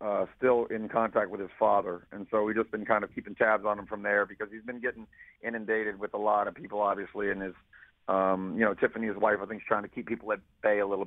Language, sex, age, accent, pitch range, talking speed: English, male, 40-59, American, 100-110 Hz, 260 wpm